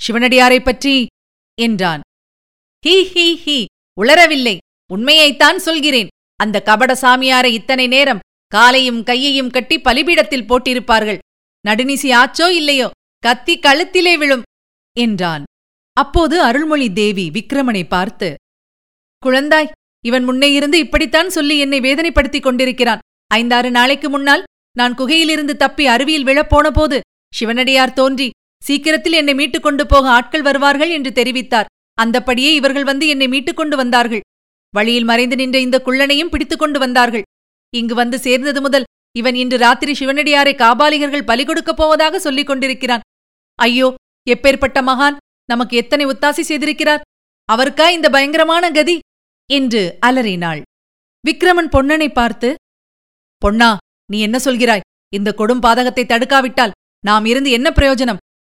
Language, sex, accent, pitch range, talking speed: Tamil, female, native, 240-295 Hz, 115 wpm